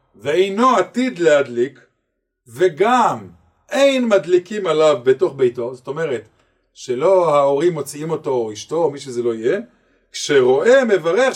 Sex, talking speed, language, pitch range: male, 125 wpm, Hebrew, 145-220 Hz